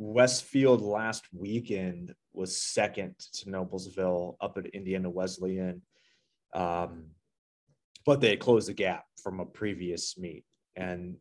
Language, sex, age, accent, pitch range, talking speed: English, male, 30-49, American, 95-120 Hz, 125 wpm